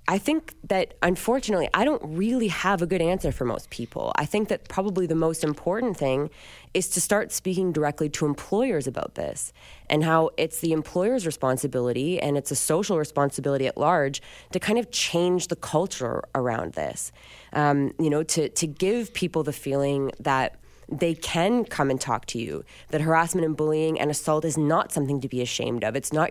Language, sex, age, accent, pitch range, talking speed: English, female, 20-39, American, 135-180 Hz, 190 wpm